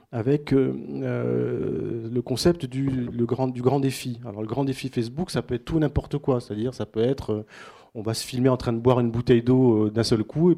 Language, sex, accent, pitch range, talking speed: French, male, French, 120-145 Hz, 245 wpm